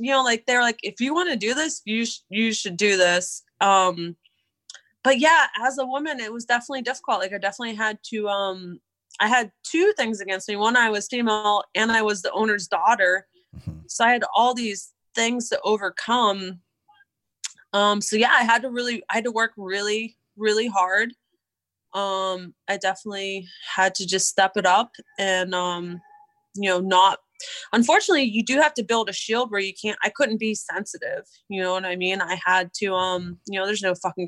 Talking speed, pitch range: 200 wpm, 190-245 Hz